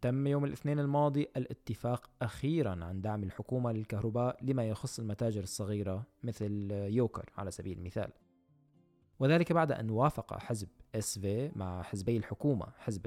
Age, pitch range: 20-39, 105-150 Hz